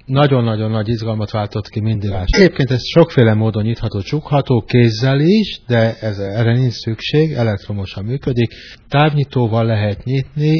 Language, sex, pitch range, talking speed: Hungarian, male, 105-125 Hz, 135 wpm